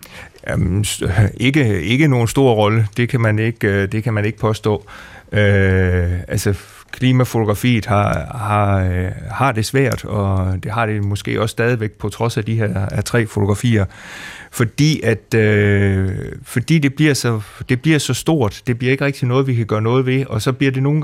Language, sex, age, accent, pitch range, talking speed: Danish, male, 30-49, native, 105-130 Hz, 170 wpm